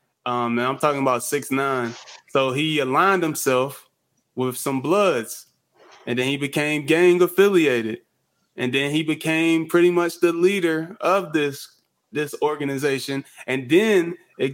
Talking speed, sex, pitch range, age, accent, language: 135 wpm, male, 130-155 Hz, 20-39, American, English